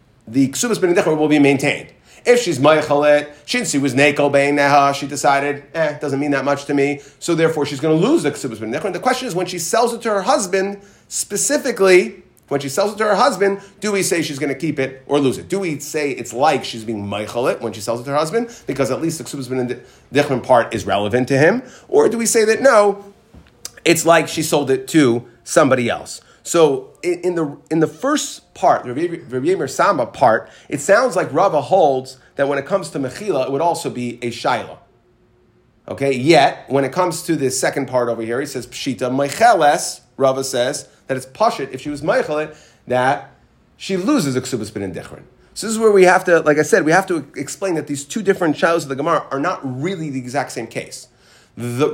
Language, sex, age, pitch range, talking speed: English, male, 30-49, 135-190 Hz, 215 wpm